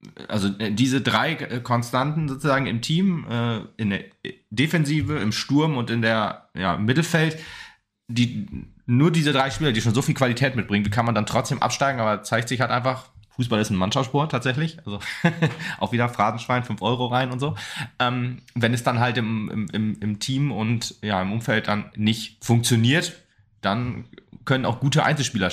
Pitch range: 105-130 Hz